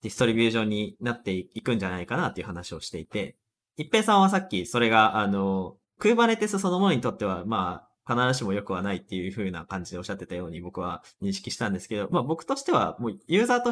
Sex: male